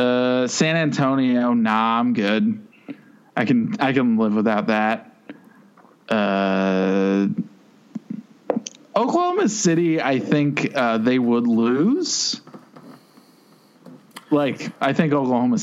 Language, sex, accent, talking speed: English, male, American, 100 wpm